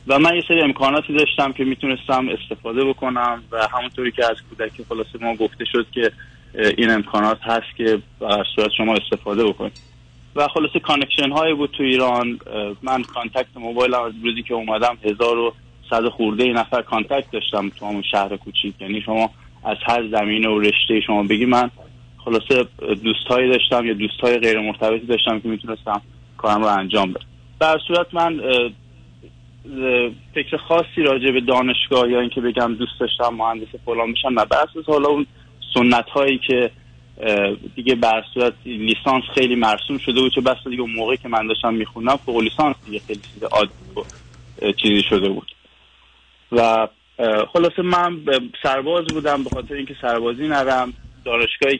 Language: Persian